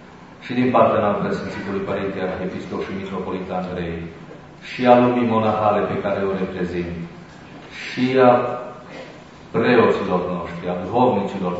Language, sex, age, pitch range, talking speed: Romanian, male, 40-59, 90-105 Hz, 125 wpm